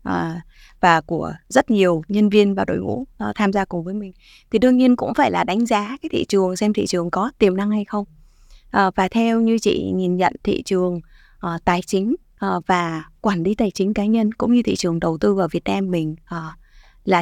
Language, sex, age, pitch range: Vietnamese, female, 20-39, 180-230 Hz